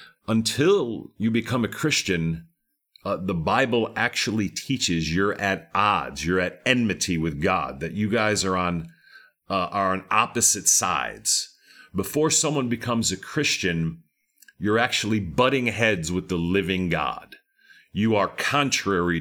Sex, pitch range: male, 95-135 Hz